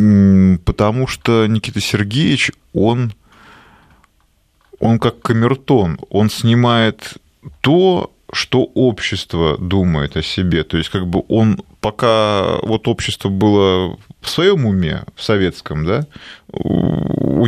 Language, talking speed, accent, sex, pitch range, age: Russian, 110 wpm, native, male, 90-115 Hz, 20-39